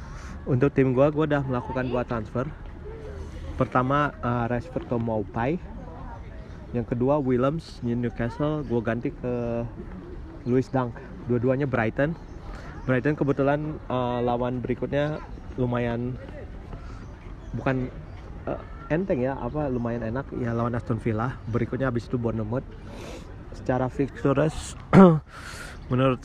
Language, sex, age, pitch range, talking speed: Indonesian, male, 30-49, 115-135 Hz, 110 wpm